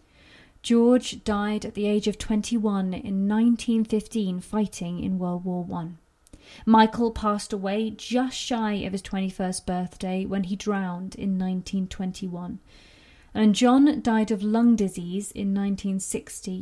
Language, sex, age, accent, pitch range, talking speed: English, female, 30-49, British, 190-235 Hz, 130 wpm